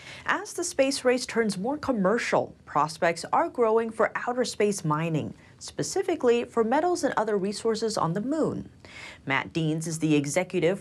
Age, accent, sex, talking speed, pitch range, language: 30-49, American, female, 155 wpm, 160-245 Hz, English